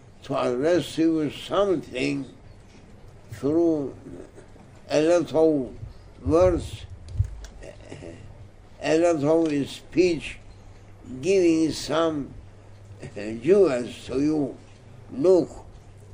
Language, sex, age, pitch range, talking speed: English, male, 60-79, 100-155 Hz, 75 wpm